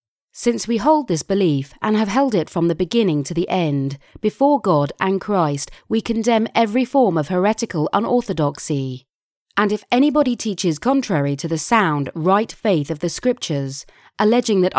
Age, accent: 30-49, British